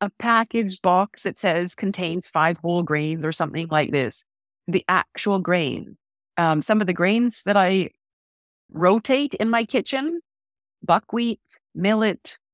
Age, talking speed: 30-49, 140 wpm